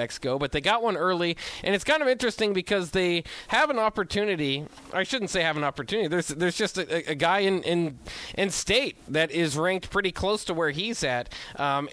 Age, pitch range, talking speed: 20-39, 150-195 Hz, 215 wpm